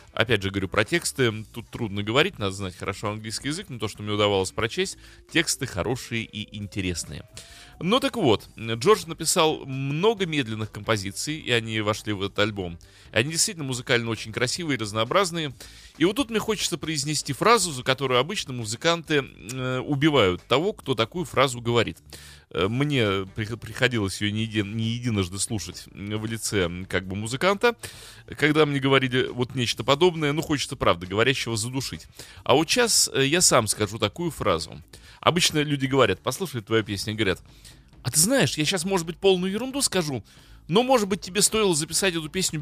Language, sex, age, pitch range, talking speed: Russian, male, 30-49, 110-170 Hz, 165 wpm